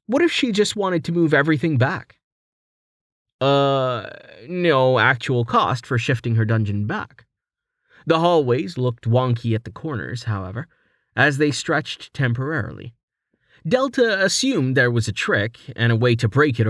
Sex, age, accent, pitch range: male, 30-49, American, 110-145 Hz